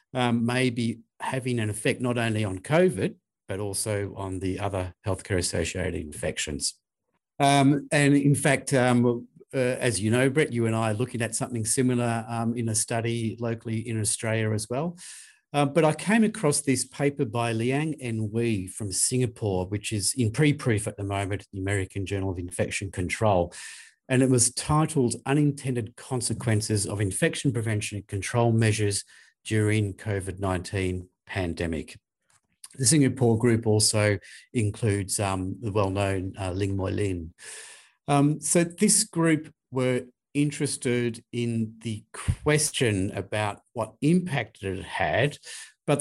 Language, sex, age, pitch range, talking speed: English, male, 50-69, 100-135 Hz, 145 wpm